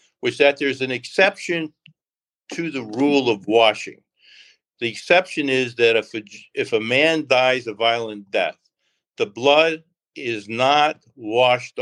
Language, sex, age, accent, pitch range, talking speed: English, male, 60-79, American, 115-150 Hz, 140 wpm